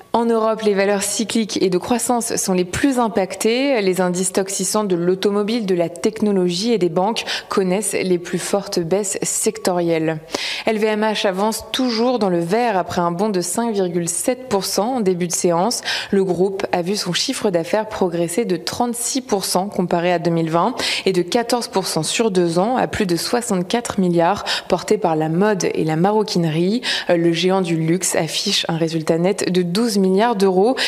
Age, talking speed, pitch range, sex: 20-39, 170 wpm, 180-220 Hz, female